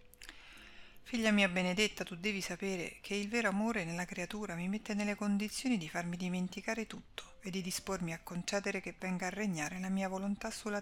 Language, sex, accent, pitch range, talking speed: Italian, female, native, 180-215 Hz, 185 wpm